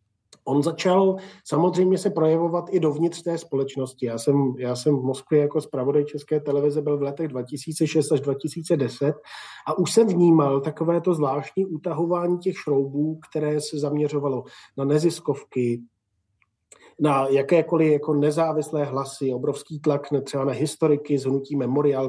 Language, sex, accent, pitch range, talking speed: Czech, male, native, 135-160 Hz, 140 wpm